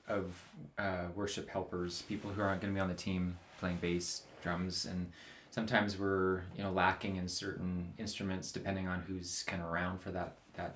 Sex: male